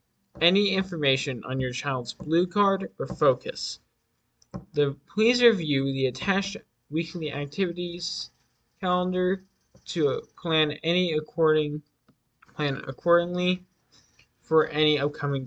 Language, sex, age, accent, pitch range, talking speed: English, male, 20-39, American, 135-170 Hz, 100 wpm